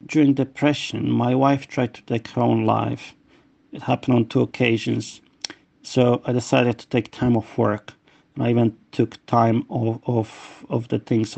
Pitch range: 115-135 Hz